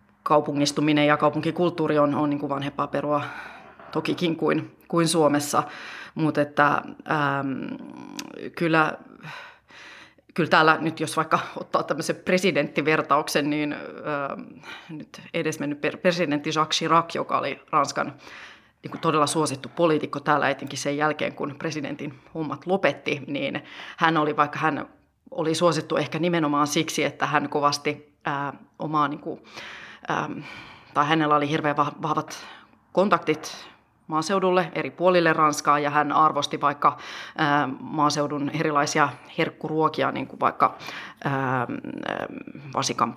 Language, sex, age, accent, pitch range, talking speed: Finnish, female, 30-49, native, 145-160 Hz, 110 wpm